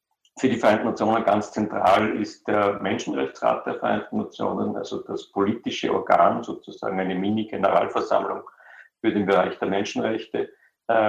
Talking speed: 130 wpm